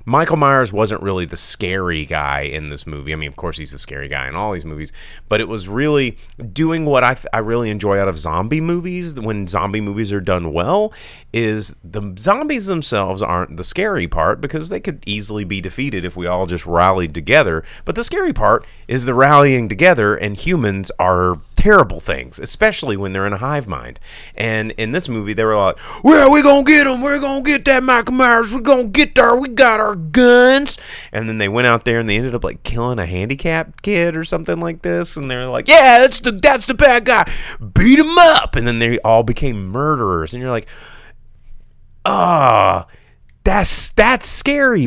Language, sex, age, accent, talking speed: English, male, 30-49, American, 210 wpm